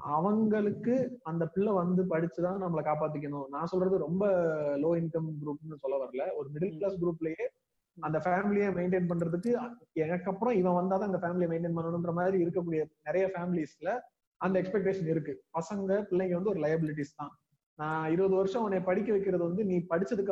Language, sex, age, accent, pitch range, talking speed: Tamil, male, 30-49, native, 165-210 Hz, 120 wpm